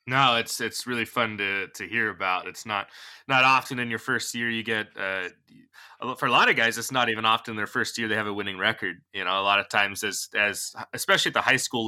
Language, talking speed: English, 255 wpm